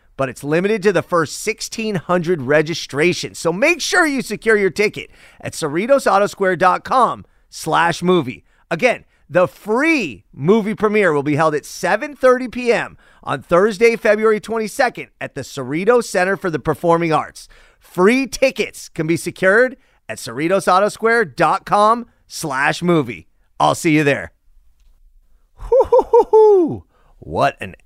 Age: 30-49